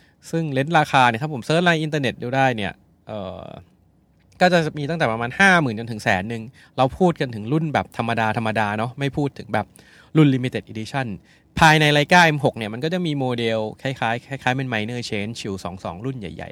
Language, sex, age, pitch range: Thai, male, 20-39, 110-150 Hz